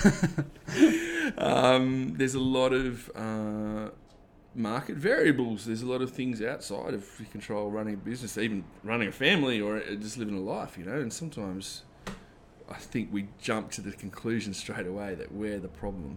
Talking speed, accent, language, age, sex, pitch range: 170 wpm, Australian, English, 20-39, male, 100-115 Hz